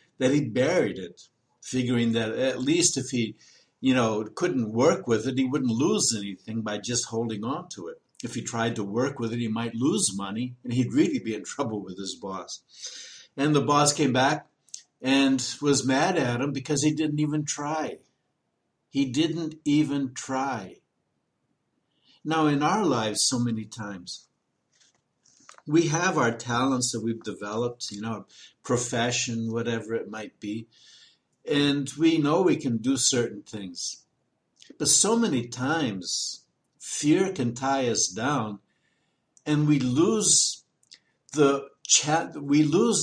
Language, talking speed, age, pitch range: English, 150 wpm, 60-79, 115-150 Hz